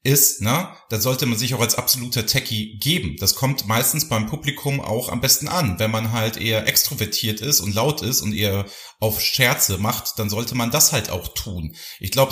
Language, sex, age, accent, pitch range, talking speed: German, male, 40-59, German, 105-140 Hz, 210 wpm